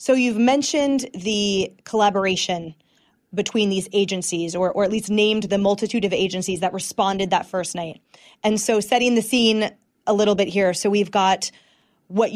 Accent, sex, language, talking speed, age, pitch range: American, female, English, 170 wpm, 20-39, 195-225 Hz